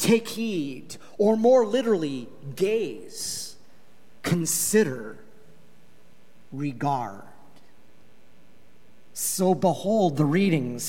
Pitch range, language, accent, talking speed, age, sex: 160-225 Hz, English, American, 65 wpm, 40-59, male